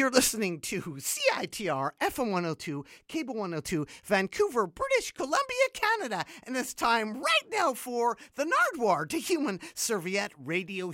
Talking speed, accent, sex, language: 130 wpm, American, male, English